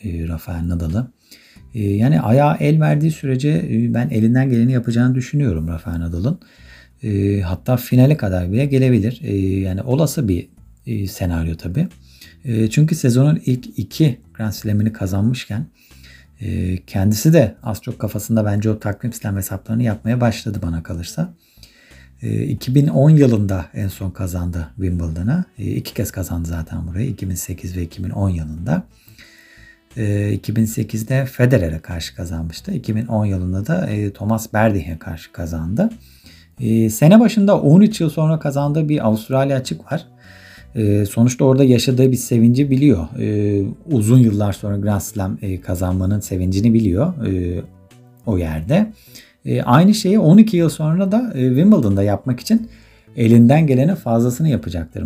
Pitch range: 95-130 Hz